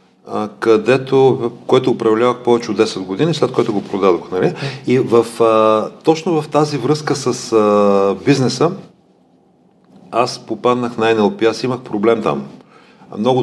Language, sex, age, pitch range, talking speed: Bulgarian, male, 40-59, 110-130 Hz, 125 wpm